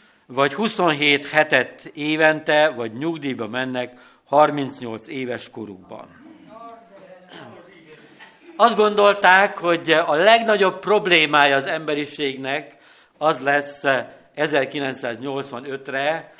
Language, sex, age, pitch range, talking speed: Hungarian, male, 60-79, 125-165 Hz, 75 wpm